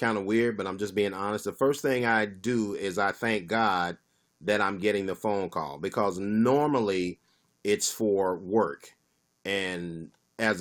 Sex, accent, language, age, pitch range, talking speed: male, American, English, 40-59, 95-125 Hz, 170 wpm